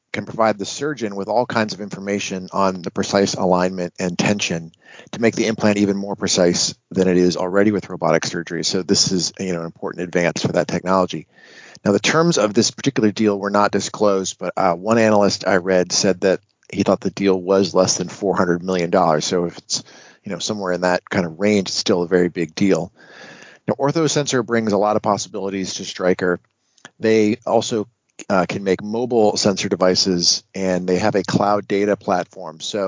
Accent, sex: American, male